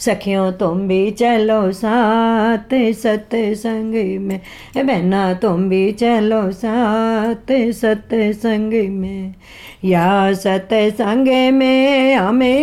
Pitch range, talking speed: 195-240 Hz, 95 wpm